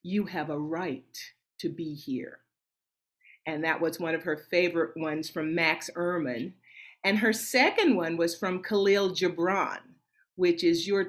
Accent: American